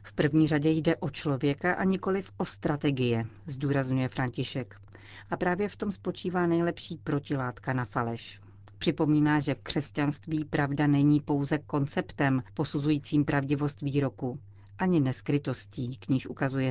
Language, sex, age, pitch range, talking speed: Czech, female, 40-59, 120-160 Hz, 130 wpm